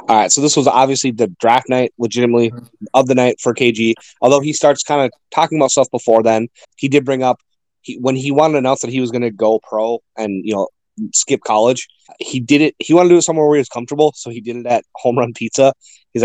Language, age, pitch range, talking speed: English, 20-39, 115-140 Hz, 255 wpm